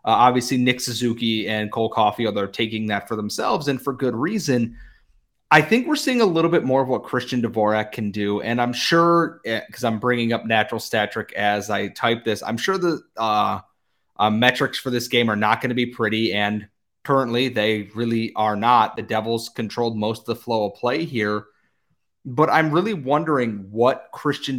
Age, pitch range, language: 30-49, 110-135 Hz, English